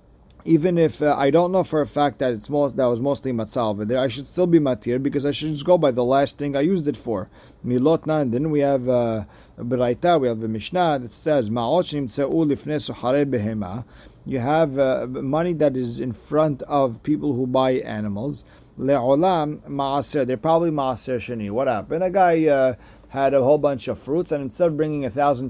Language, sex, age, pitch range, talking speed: English, male, 50-69, 120-150 Hz, 190 wpm